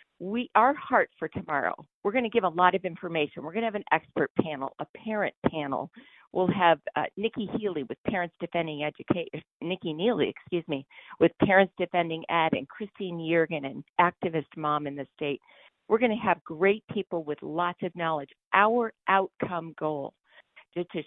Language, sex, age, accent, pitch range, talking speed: English, female, 50-69, American, 155-205 Hz, 180 wpm